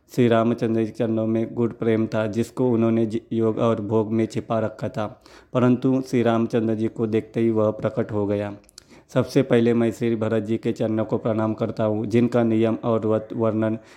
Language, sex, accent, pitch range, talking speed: Hindi, male, native, 110-120 Hz, 195 wpm